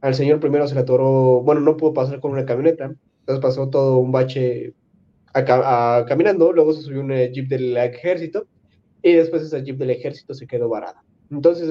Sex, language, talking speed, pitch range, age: male, Spanish, 195 wpm, 125-155 Hz, 20-39